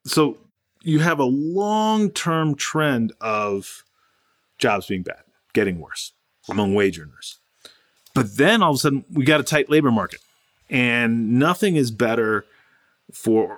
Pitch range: 110-140 Hz